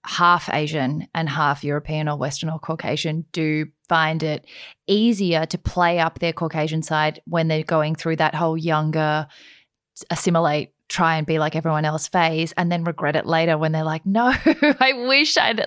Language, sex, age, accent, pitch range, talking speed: English, female, 20-39, Australian, 155-195 Hz, 175 wpm